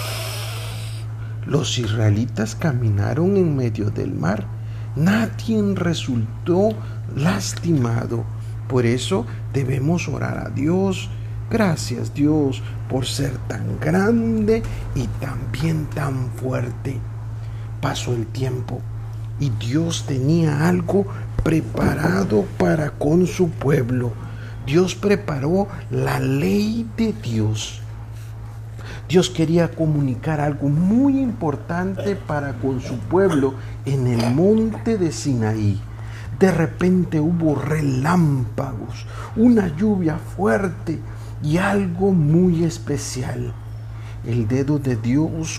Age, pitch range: 50-69, 110-155 Hz